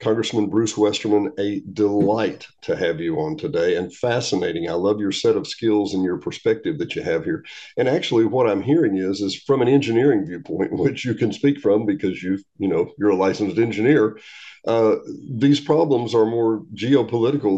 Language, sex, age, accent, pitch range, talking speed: English, male, 50-69, American, 105-145 Hz, 190 wpm